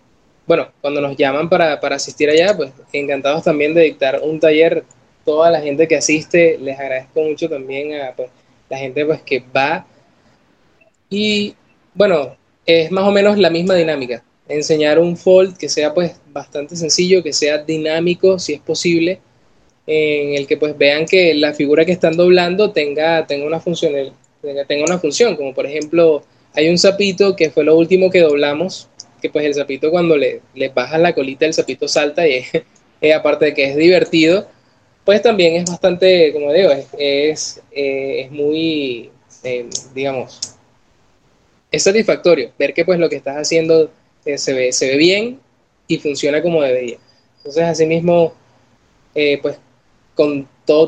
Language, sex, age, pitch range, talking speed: Spanish, male, 20-39, 140-170 Hz, 170 wpm